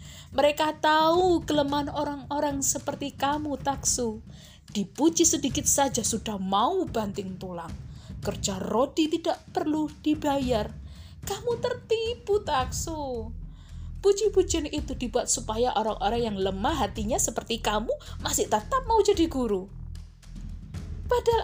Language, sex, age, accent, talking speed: Indonesian, female, 20-39, native, 105 wpm